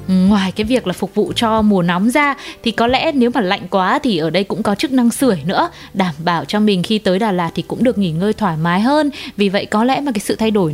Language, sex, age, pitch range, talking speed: Vietnamese, female, 20-39, 195-260 Hz, 285 wpm